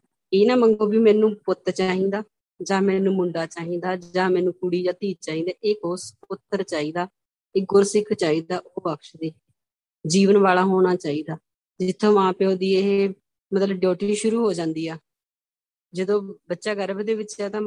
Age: 20-39